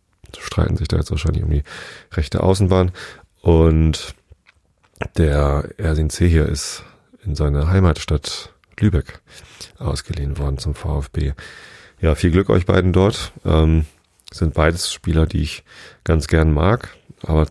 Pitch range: 75-95 Hz